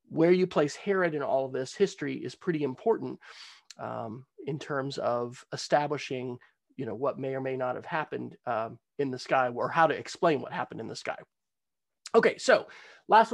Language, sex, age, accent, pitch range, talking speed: English, male, 30-49, American, 150-200 Hz, 190 wpm